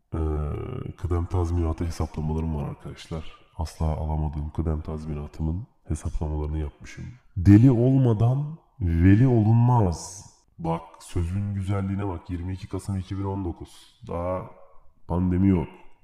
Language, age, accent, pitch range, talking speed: Turkish, 30-49, native, 80-100 Hz, 95 wpm